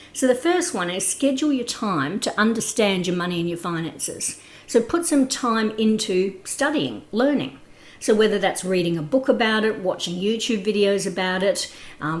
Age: 50-69